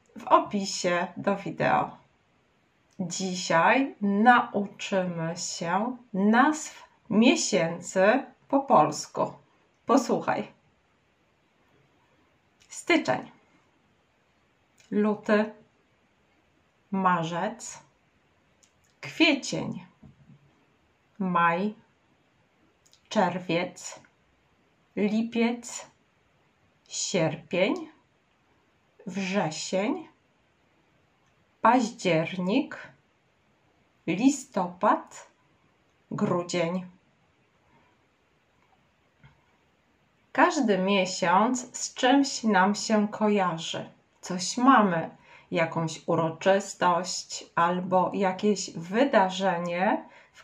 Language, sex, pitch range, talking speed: Polish, female, 180-245 Hz, 45 wpm